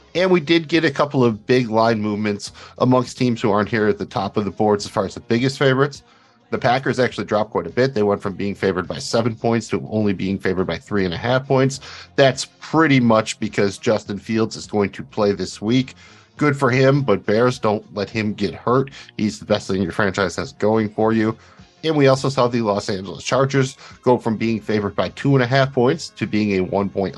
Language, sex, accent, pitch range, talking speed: English, male, American, 100-125 Hz, 235 wpm